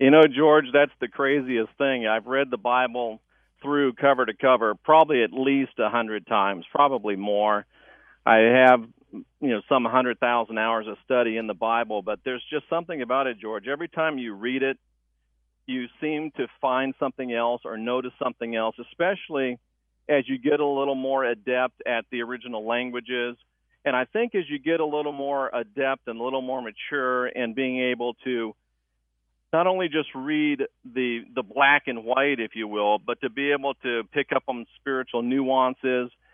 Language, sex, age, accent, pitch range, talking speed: English, male, 50-69, American, 115-135 Hz, 180 wpm